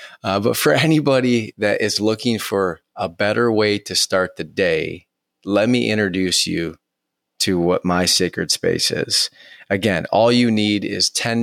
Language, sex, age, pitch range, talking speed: English, male, 30-49, 90-110 Hz, 165 wpm